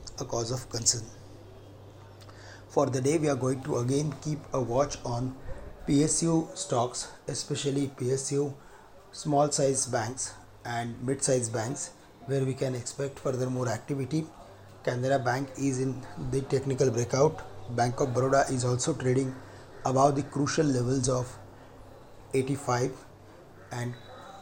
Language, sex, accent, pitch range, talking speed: English, male, Indian, 120-140 Hz, 130 wpm